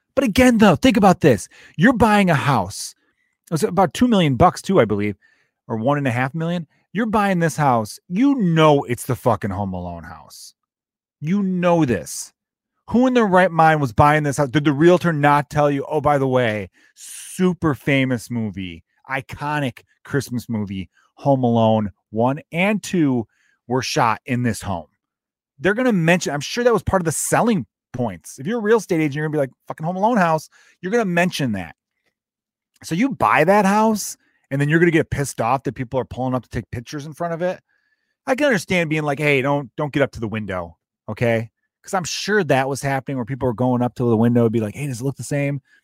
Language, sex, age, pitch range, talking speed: English, male, 30-49, 125-180 Hz, 225 wpm